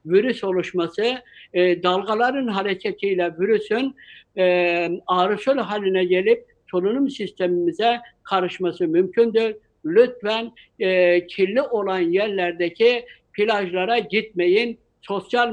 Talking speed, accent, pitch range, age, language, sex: 85 wpm, native, 185-240 Hz, 60-79, Turkish, male